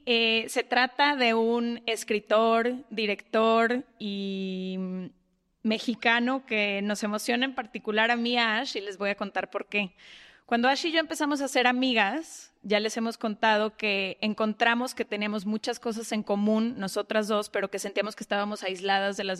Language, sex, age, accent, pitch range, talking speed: Spanish, female, 20-39, Mexican, 210-250 Hz, 165 wpm